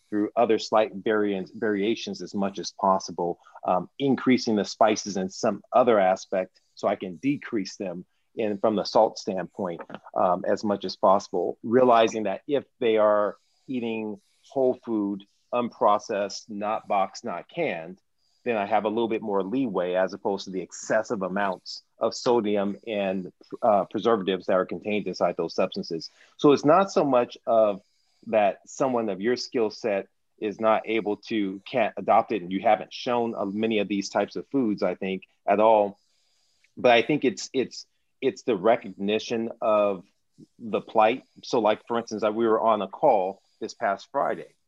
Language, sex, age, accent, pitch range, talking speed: English, male, 30-49, American, 100-115 Hz, 170 wpm